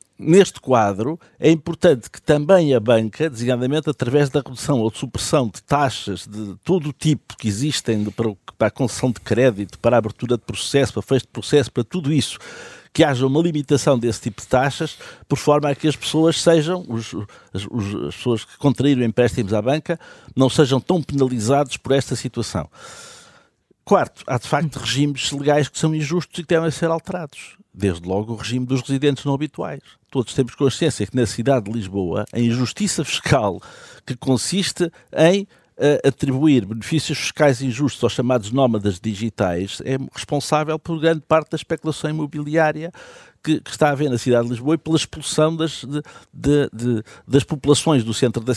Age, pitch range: 60-79, 120-155 Hz